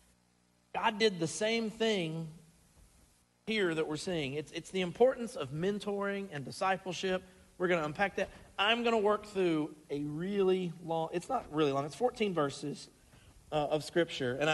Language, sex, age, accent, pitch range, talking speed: English, male, 40-59, American, 155-200 Hz, 170 wpm